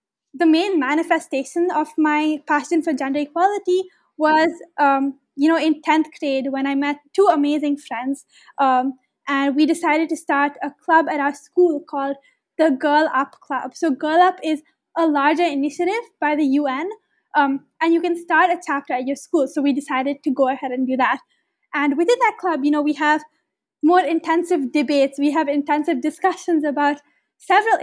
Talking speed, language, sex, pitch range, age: 180 wpm, English, female, 280-330 Hz, 20-39